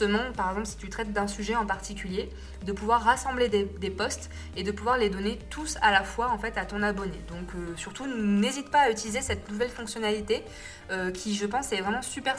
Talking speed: 225 wpm